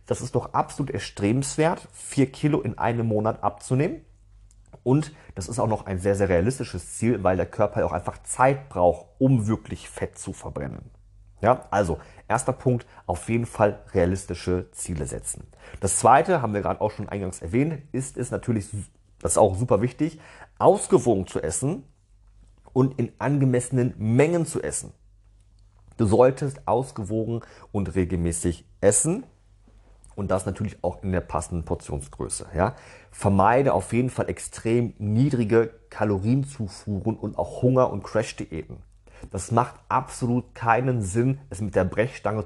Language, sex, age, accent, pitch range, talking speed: German, male, 40-59, German, 95-125 Hz, 150 wpm